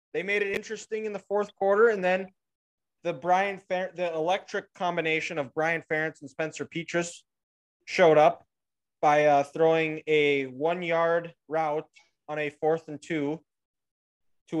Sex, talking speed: male, 150 wpm